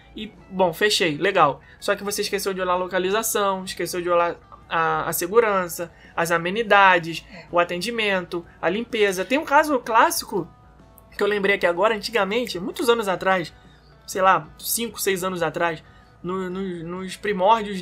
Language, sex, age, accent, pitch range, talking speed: Portuguese, male, 20-39, Brazilian, 180-235 Hz, 150 wpm